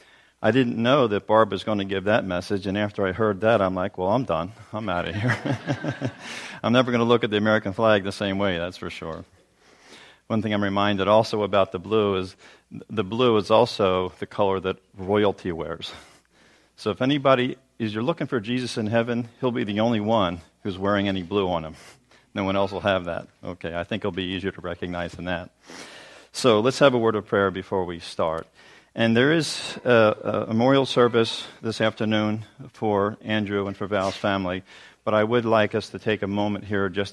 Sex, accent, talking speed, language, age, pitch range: male, American, 210 wpm, English, 40-59, 95-115 Hz